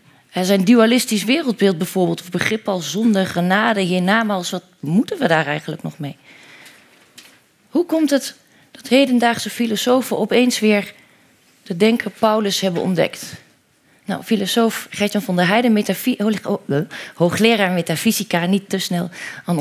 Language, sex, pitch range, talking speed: Dutch, female, 185-225 Hz, 135 wpm